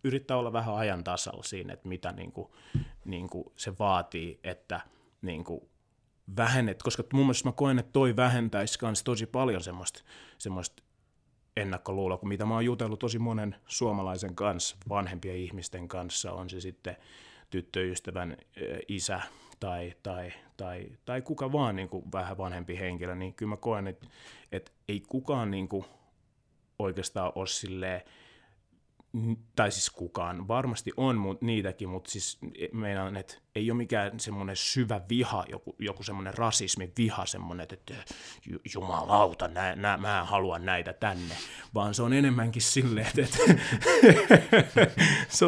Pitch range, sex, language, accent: 95-120 Hz, male, Finnish, native